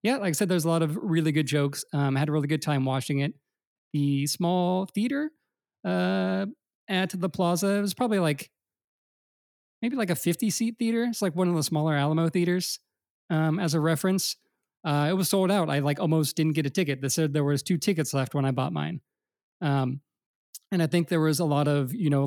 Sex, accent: male, American